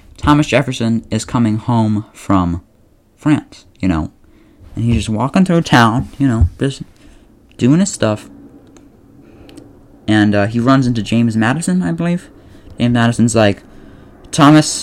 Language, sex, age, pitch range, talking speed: English, male, 20-39, 95-145 Hz, 140 wpm